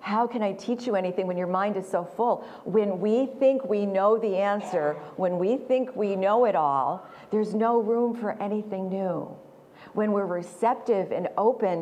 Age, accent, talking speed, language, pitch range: 50-69, American, 190 wpm, English, 175-220 Hz